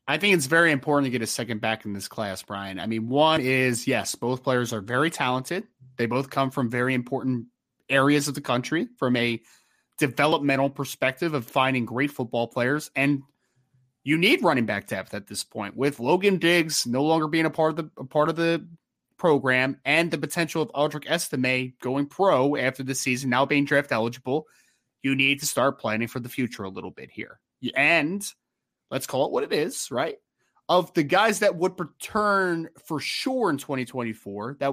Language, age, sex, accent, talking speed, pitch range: English, 30-49, male, American, 195 wpm, 130-165 Hz